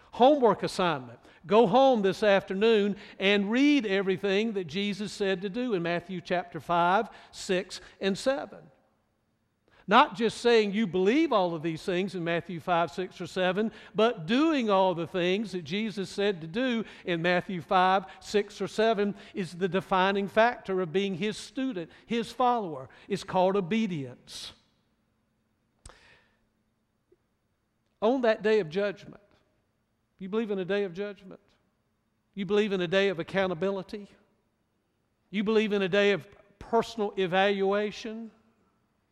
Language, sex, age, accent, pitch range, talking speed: English, male, 60-79, American, 170-210 Hz, 140 wpm